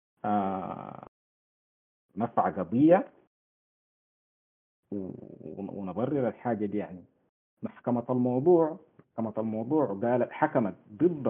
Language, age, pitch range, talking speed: Arabic, 50-69, 100-135 Hz, 75 wpm